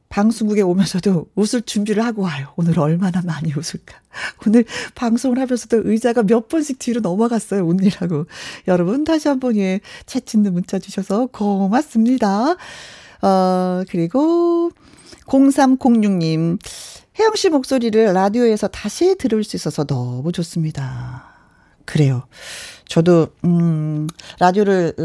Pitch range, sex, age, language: 175-245 Hz, female, 40-59, Korean